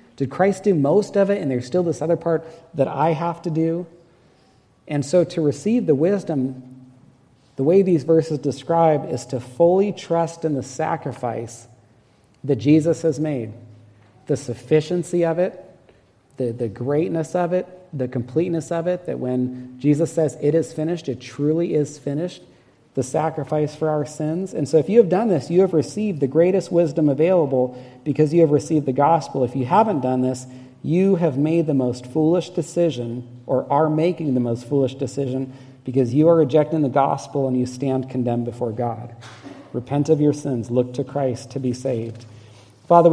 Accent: American